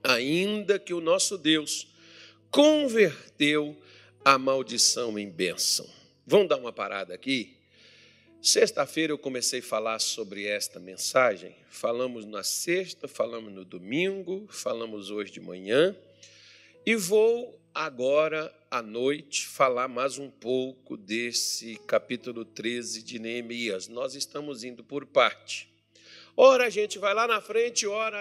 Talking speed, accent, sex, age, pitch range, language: 130 wpm, Brazilian, male, 50-69, 120-170 Hz, Portuguese